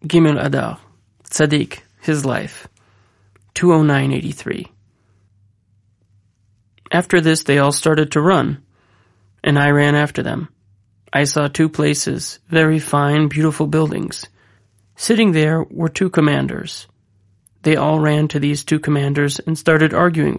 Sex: male